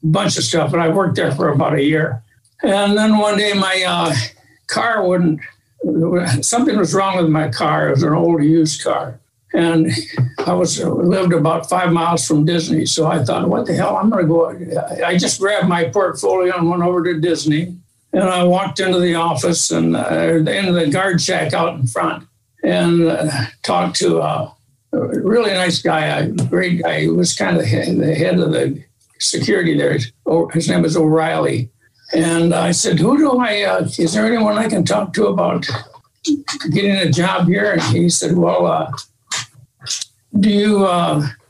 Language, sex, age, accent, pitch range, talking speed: English, male, 60-79, American, 155-190 Hz, 185 wpm